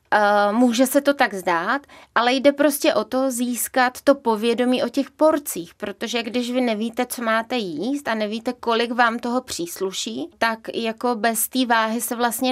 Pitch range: 215-250 Hz